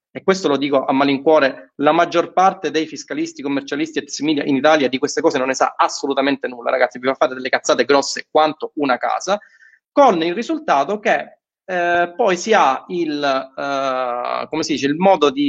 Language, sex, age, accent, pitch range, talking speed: Italian, male, 30-49, native, 145-205 Hz, 195 wpm